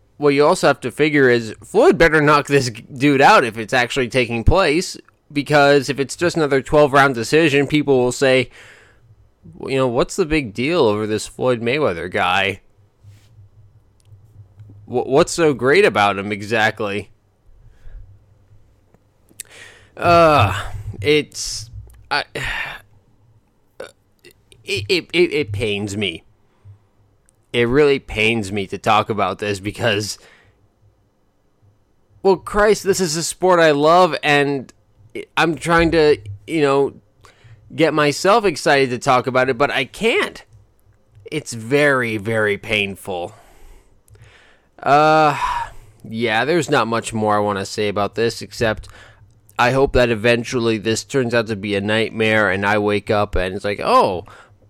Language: English